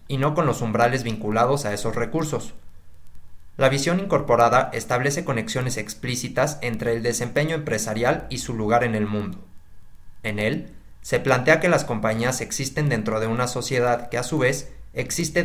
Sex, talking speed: male, 165 wpm